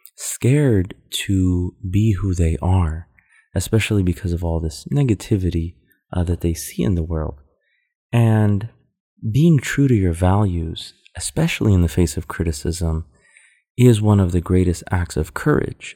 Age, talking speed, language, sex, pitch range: 30-49, 145 wpm, English, male, 85-100 Hz